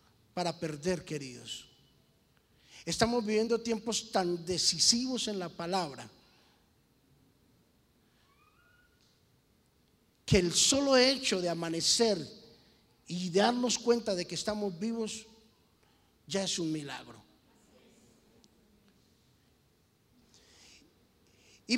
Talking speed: 80 wpm